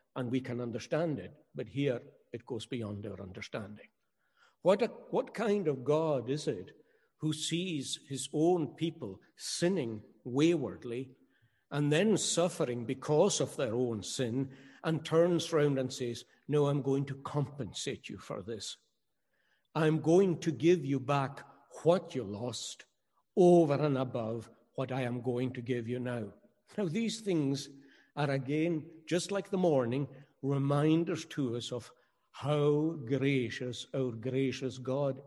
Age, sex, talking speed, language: 60-79, male, 145 wpm, English